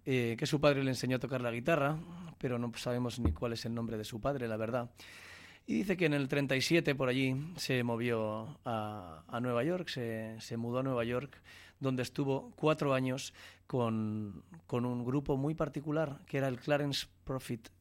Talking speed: 195 wpm